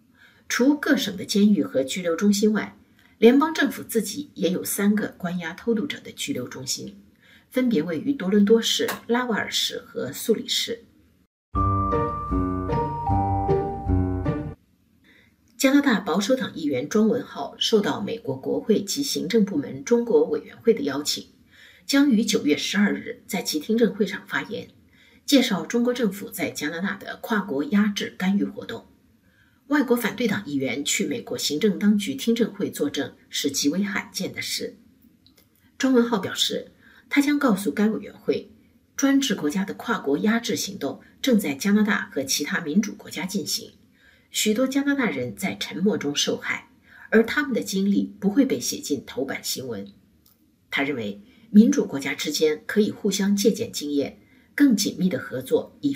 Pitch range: 185-240 Hz